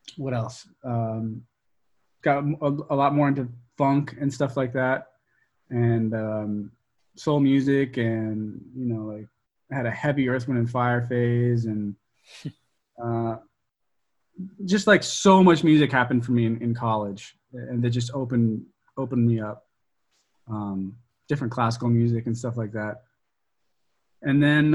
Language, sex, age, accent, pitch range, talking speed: English, male, 20-39, American, 120-150 Hz, 145 wpm